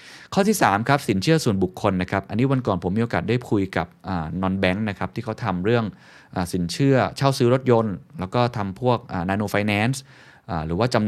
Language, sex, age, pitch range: Thai, male, 20-39, 90-120 Hz